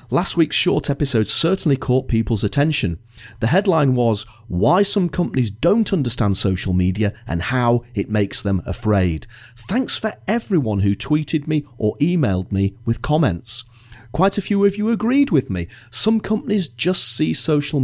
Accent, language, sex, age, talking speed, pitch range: British, English, male, 40-59, 160 wpm, 100-145 Hz